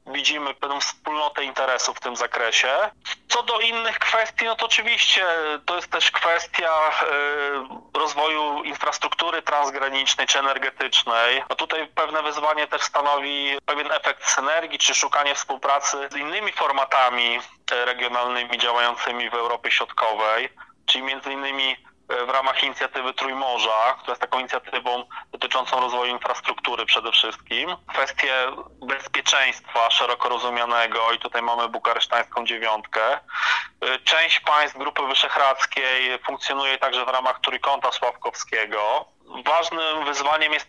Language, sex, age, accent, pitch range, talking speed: Polish, male, 30-49, native, 125-150 Hz, 120 wpm